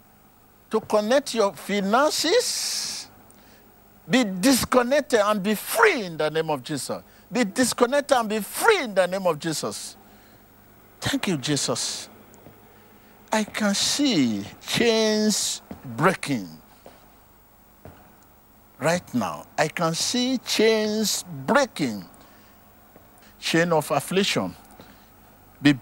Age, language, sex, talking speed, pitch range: 50-69, English, male, 100 wpm, 150-220 Hz